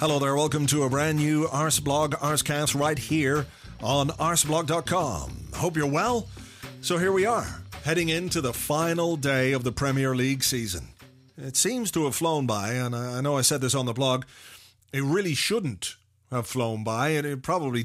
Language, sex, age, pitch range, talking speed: English, male, 40-59, 125-150 Hz, 185 wpm